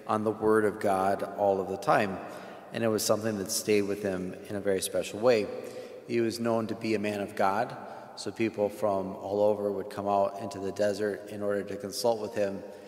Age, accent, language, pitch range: 30-49, American, English, 100-110 Hz